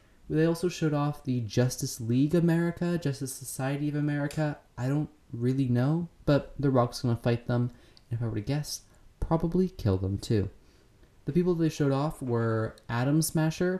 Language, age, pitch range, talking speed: English, 20-39, 115-150 Hz, 175 wpm